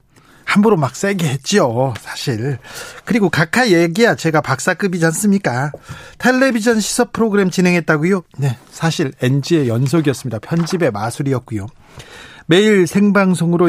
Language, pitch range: Korean, 130-170 Hz